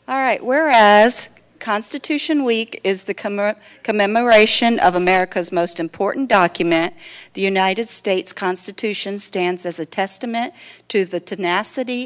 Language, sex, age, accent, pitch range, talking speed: English, female, 50-69, American, 175-215 Hz, 120 wpm